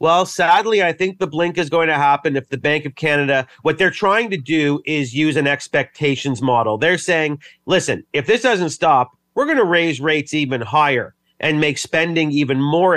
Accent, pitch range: American, 140-165 Hz